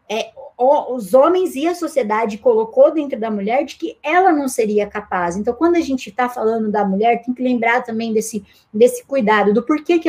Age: 20-39